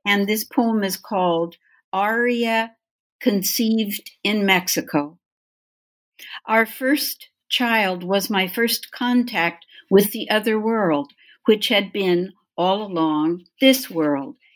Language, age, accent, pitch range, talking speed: English, 60-79, American, 185-225 Hz, 110 wpm